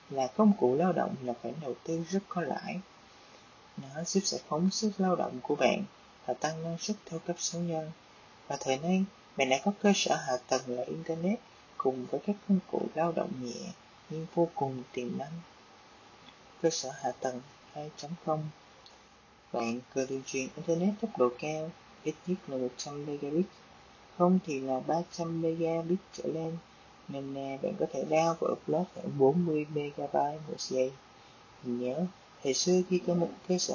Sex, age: female, 20-39